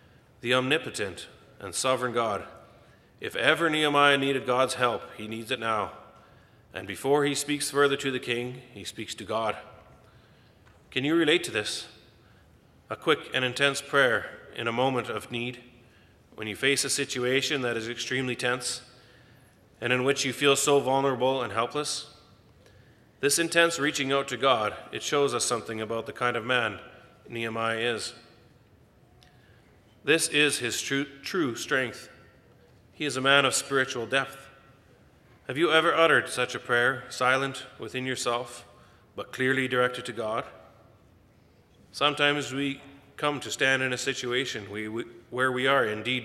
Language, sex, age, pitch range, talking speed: English, male, 30-49, 115-140 Hz, 150 wpm